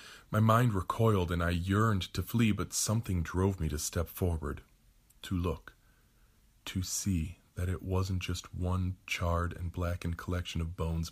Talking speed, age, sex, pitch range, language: 160 wpm, 40-59, male, 80-95 Hz, English